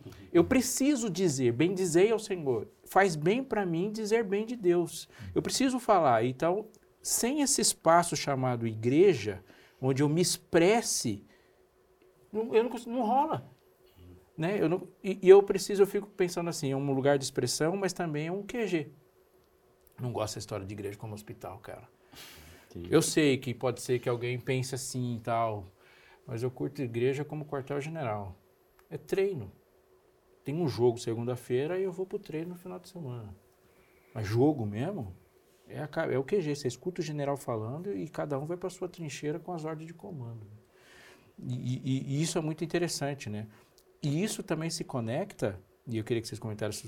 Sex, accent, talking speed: male, Brazilian, 185 wpm